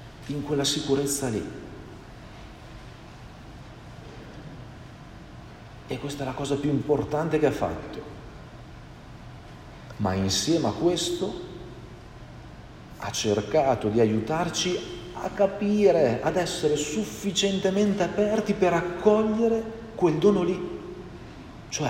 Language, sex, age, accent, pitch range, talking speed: Italian, male, 50-69, native, 110-150 Hz, 95 wpm